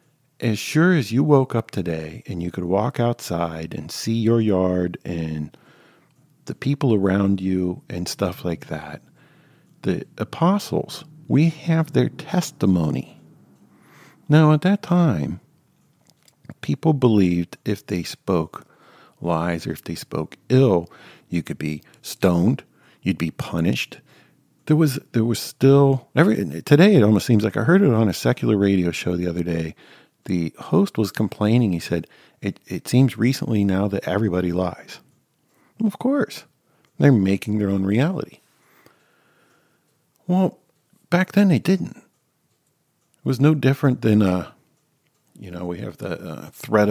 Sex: male